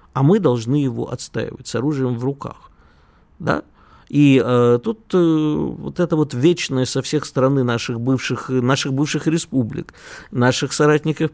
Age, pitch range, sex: 50-69, 110-145 Hz, male